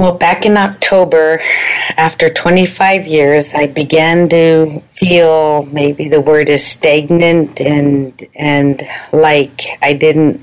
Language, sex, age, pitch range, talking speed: English, female, 40-59, 150-170 Hz, 120 wpm